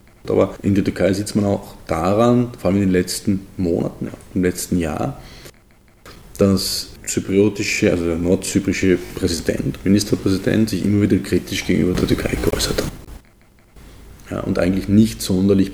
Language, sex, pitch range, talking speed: German, male, 90-100 Hz, 150 wpm